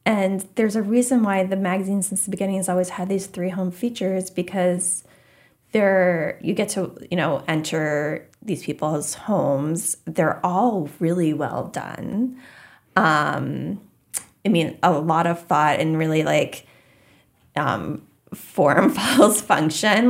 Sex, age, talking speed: female, 20-39, 135 wpm